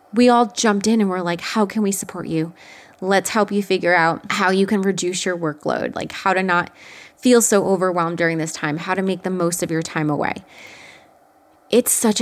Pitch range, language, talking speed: 170-215 Hz, English, 215 wpm